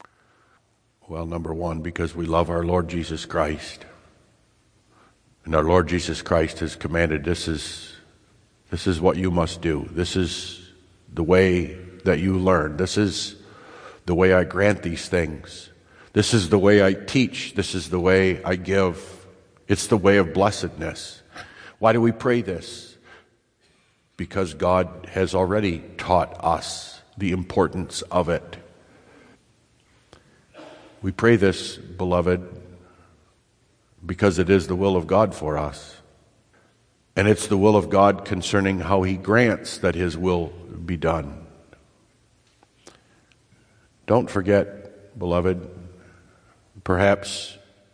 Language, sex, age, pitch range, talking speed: English, male, 60-79, 90-105 Hz, 130 wpm